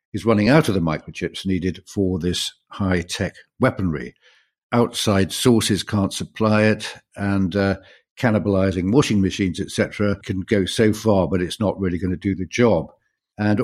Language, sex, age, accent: English, male, 60-79, British